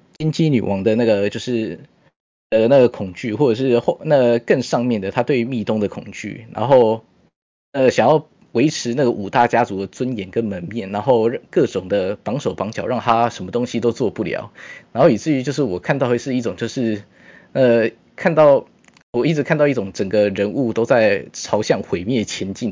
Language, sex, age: Chinese, male, 20-39